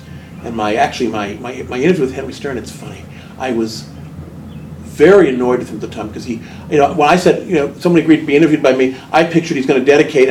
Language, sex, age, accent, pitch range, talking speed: English, male, 40-59, American, 115-140 Hz, 245 wpm